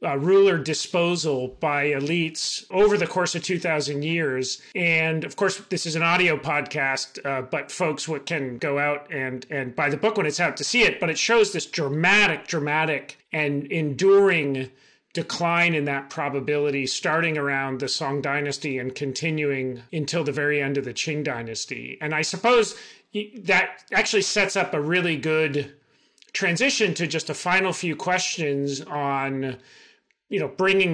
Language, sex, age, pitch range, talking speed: English, male, 40-59, 145-180 Hz, 165 wpm